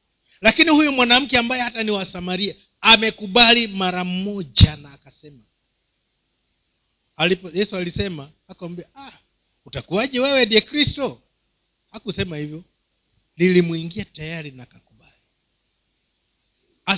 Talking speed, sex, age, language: 90 wpm, male, 50-69, Swahili